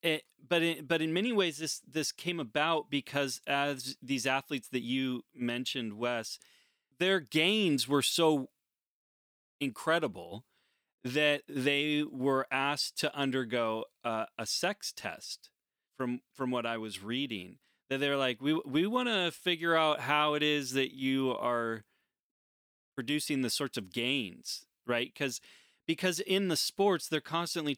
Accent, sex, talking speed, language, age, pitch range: American, male, 150 wpm, English, 30-49, 130-160 Hz